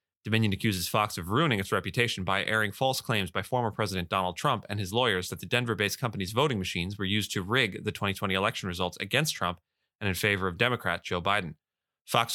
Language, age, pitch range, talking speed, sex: English, 30-49, 100-115 Hz, 210 wpm, male